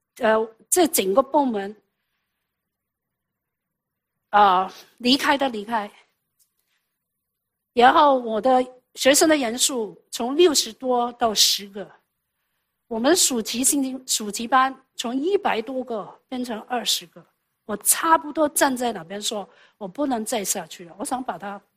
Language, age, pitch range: English, 50-69, 230-325 Hz